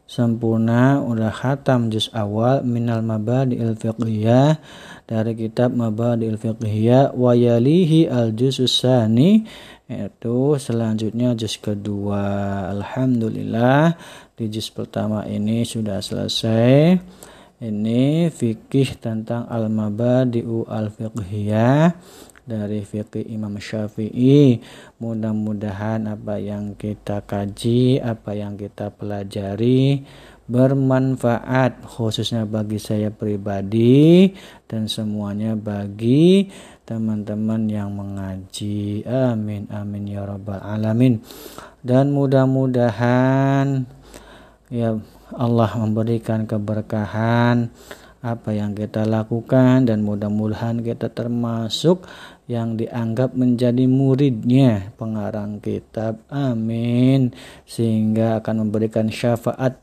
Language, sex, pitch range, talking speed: Indonesian, male, 110-125 Hz, 85 wpm